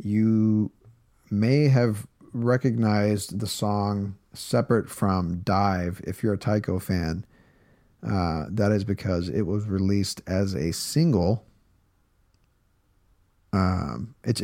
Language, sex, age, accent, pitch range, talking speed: English, male, 40-59, American, 95-115 Hz, 110 wpm